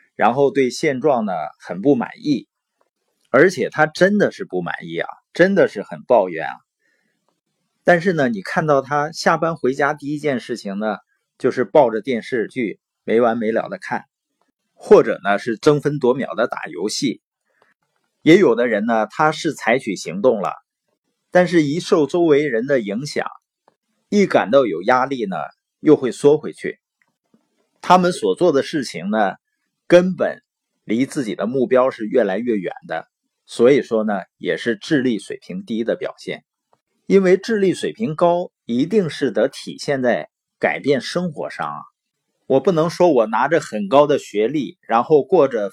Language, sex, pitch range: Chinese, male, 125-195 Hz